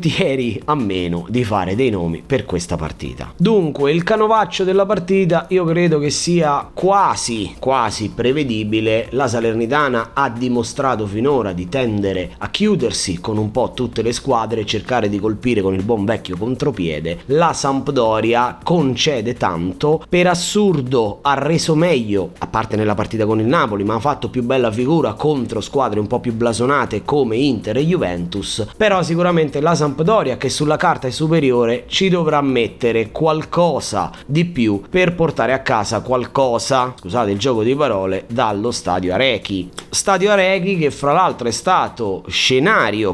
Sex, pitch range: male, 105-155 Hz